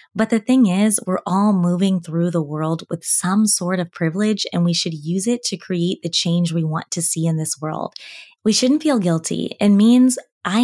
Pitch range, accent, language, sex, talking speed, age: 170-205 Hz, American, English, female, 215 wpm, 20-39